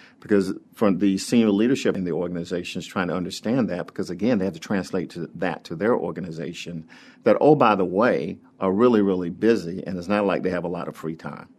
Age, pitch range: 50-69, 90-105 Hz